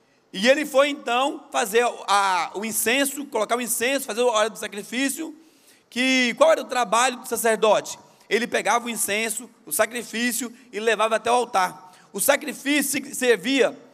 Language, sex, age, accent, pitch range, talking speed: Portuguese, male, 30-49, Brazilian, 225-275 Hz, 155 wpm